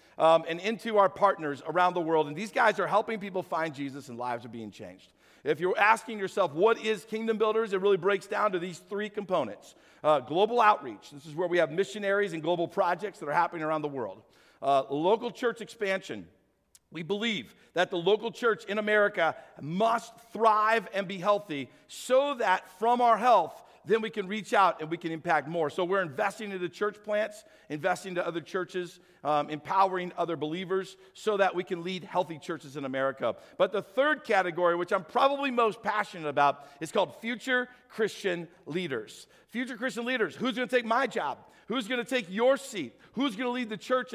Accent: American